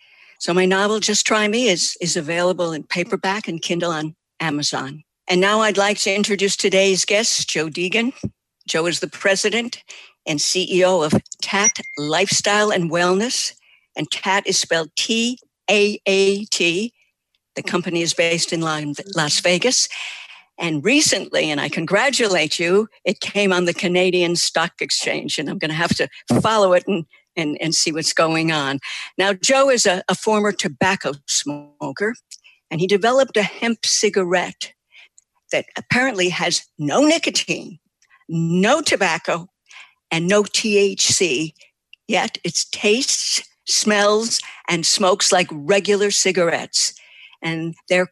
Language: English